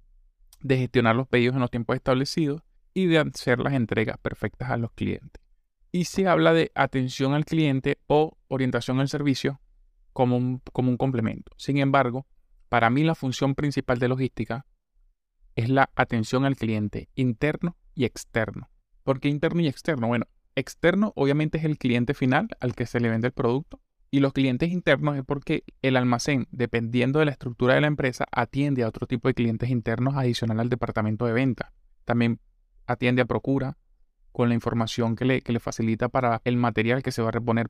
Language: Spanish